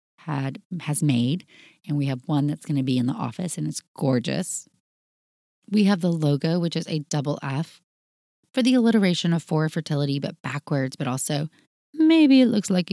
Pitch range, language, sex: 140-180 Hz, English, female